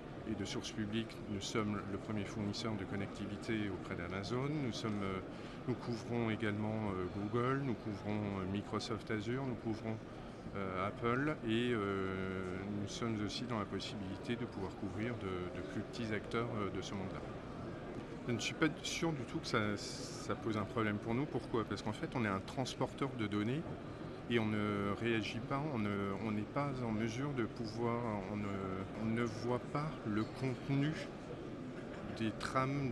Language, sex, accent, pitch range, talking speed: French, male, French, 105-125 Hz, 165 wpm